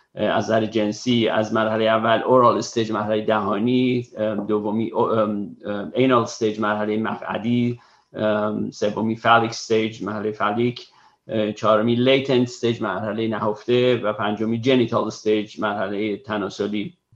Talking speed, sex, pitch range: 100 wpm, male, 110-125 Hz